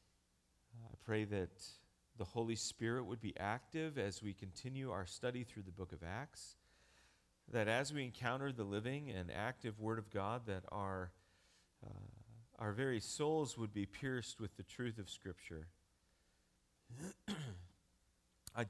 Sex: male